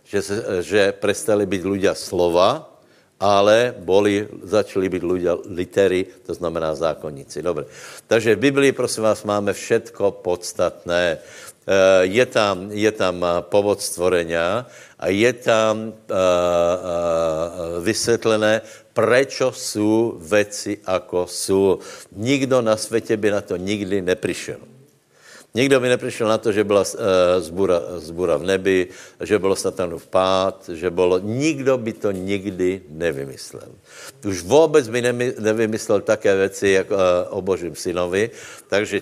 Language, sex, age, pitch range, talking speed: Slovak, male, 60-79, 90-110 Hz, 125 wpm